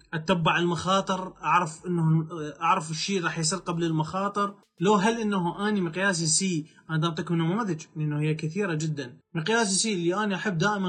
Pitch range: 160-200 Hz